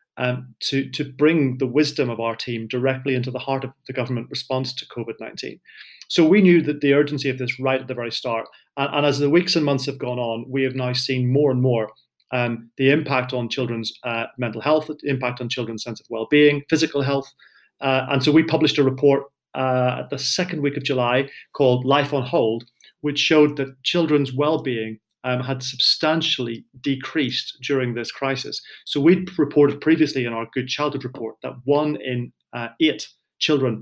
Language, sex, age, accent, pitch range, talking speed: English, male, 30-49, British, 125-145 Hz, 195 wpm